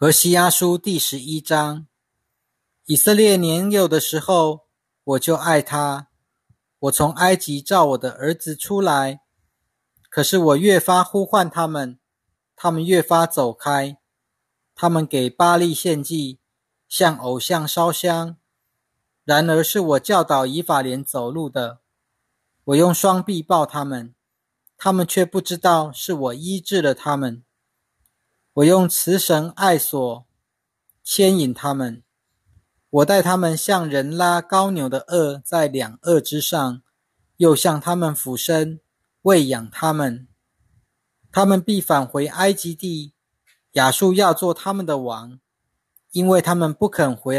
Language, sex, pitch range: Chinese, male, 130-175 Hz